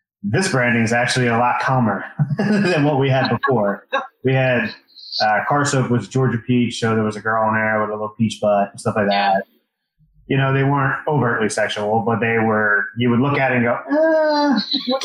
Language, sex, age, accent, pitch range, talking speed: English, male, 30-49, American, 105-130 Hz, 215 wpm